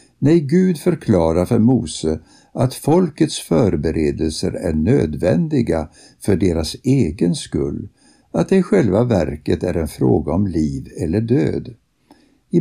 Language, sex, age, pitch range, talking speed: Swedish, male, 60-79, 85-135 Hz, 130 wpm